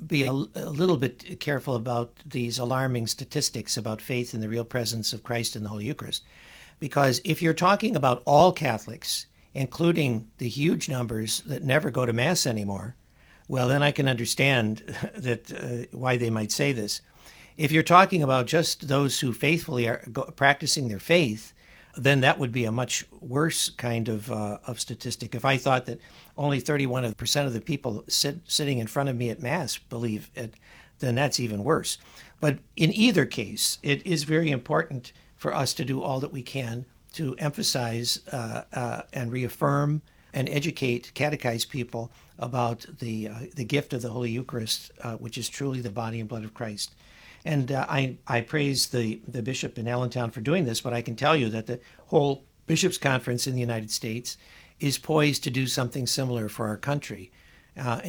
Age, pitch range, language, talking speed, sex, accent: 60-79, 115-145 Hz, English, 185 wpm, male, American